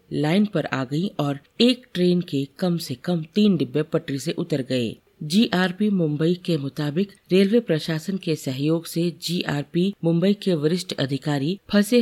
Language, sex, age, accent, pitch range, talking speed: Hindi, female, 50-69, native, 140-180 Hz, 160 wpm